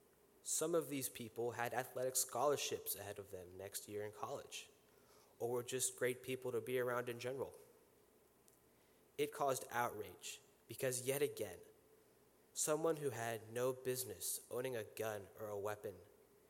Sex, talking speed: male, 150 wpm